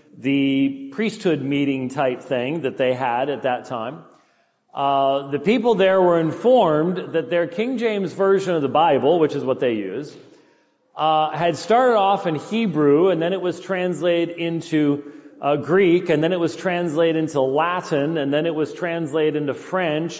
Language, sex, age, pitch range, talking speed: English, male, 40-59, 145-180 Hz, 170 wpm